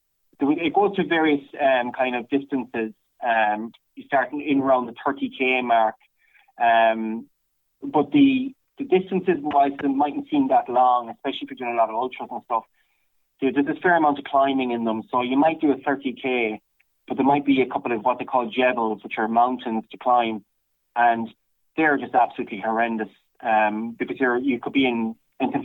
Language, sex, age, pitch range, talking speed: English, male, 20-39, 115-130 Hz, 185 wpm